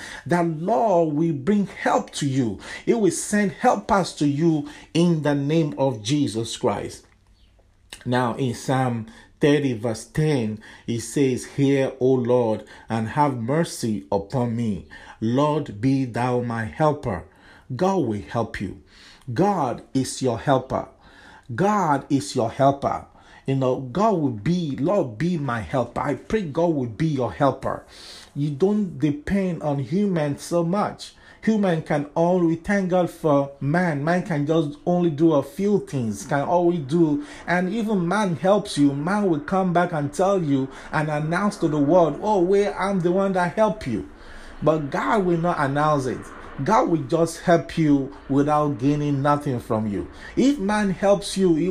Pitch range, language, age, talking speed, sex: 130-180 Hz, English, 50-69, 160 wpm, male